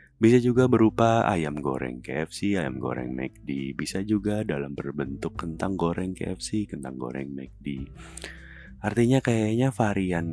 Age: 30-49